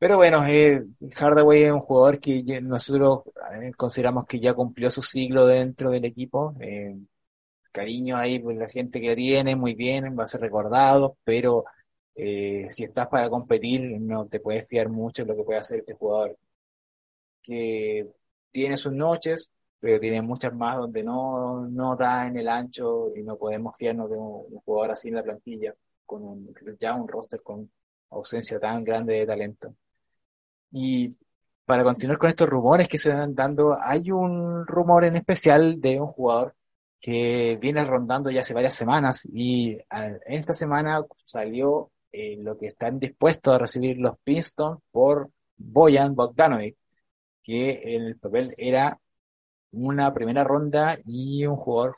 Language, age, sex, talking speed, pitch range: Spanish, 20-39, male, 165 wpm, 115-140 Hz